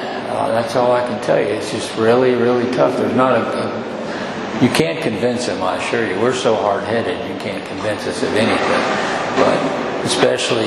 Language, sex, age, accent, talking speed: English, male, 50-69, American, 190 wpm